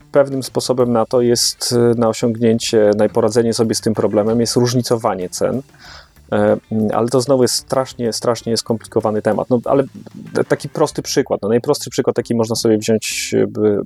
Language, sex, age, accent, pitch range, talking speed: Polish, male, 30-49, native, 105-125 Hz, 150 wpm